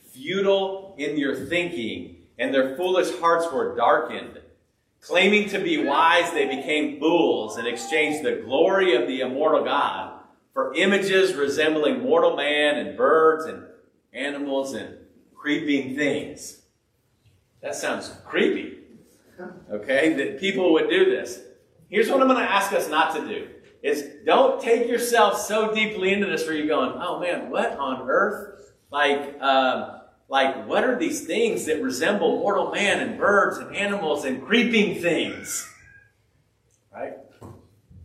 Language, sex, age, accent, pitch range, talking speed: English, male, 40-59, American, 140-220 Hz, 145 wpm